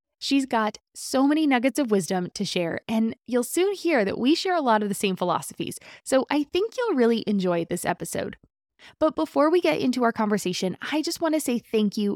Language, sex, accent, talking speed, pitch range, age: English, female, American, 215 wpm, 200-265 Hz, 20-39